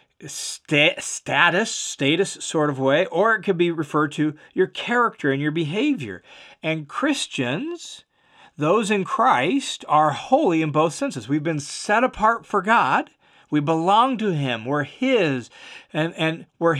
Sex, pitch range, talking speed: male, 150-215 Hz, 145 wpm